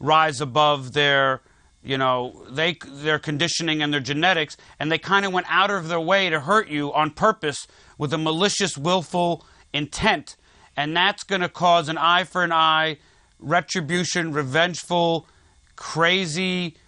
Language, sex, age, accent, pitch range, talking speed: English, male, 40-59, American, 150-175 Hz, 150 wpm